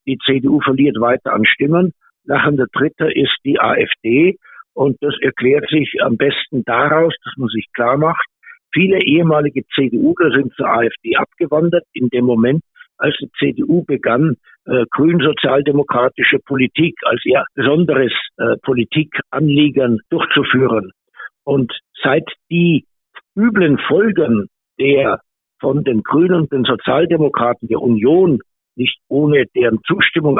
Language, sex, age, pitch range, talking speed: German, male, 60-79, 130-160 Hz, 120 wpm